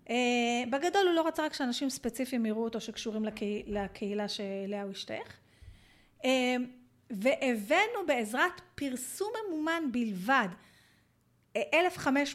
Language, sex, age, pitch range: Hebrew, female, 30-49, 225-315 Hz